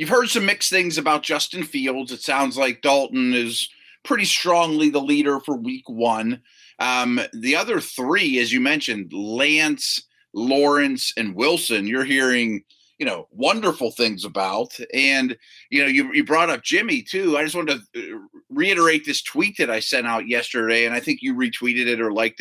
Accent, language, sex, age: American, English, male, 30-49